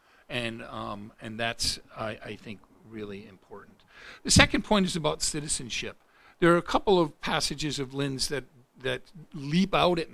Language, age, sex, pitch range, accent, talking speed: English, 50-69, male, 125-195 Hz, American, 165 wpm